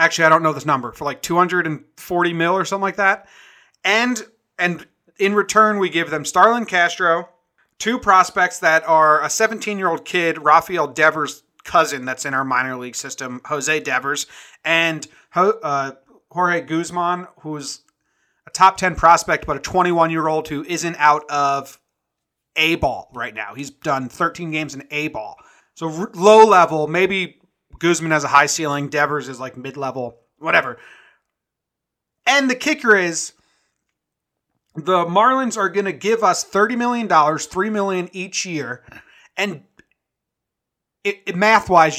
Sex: male